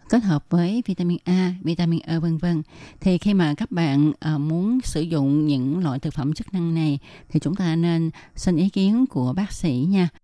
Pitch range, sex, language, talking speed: 155-195 Hz, female, Vietnamese, 205 wpm